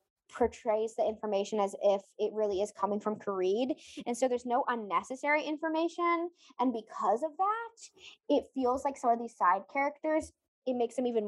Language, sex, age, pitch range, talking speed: English, female, 20-39, 215-300 Hz, 175 wpm